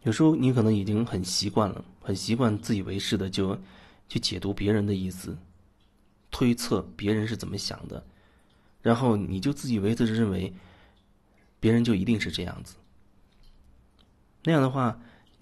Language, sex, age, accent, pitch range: Chinese, male, 30-49, native, 90-110 Hz